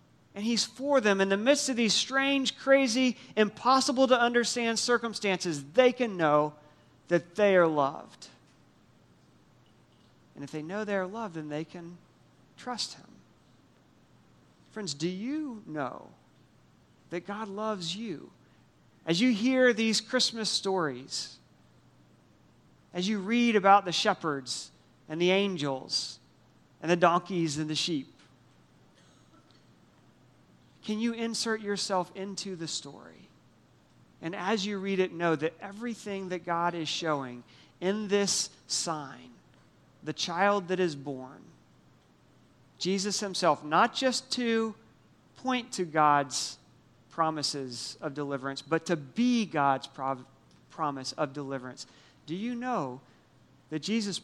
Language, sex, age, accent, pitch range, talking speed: English, male, 40-59, American, 145-220 Hz, 125 wpm